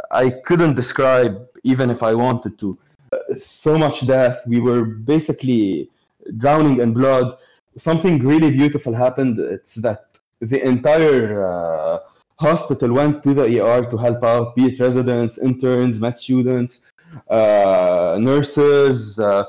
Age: 20-39